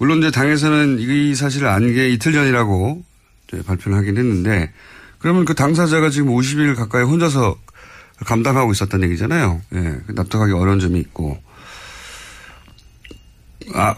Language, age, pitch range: Korean, 40-59, 100-150 Hz